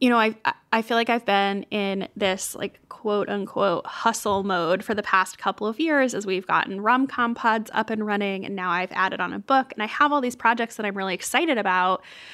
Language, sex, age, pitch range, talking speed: English, female, 10-29, 205-270 Hz, 230 wpm